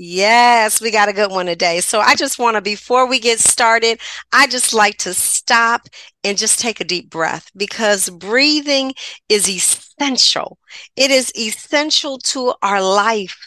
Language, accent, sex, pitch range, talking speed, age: English, American, female, 185-235 Hz, 165 wpm, 40-59